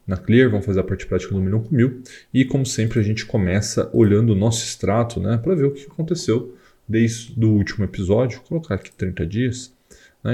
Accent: Brazilian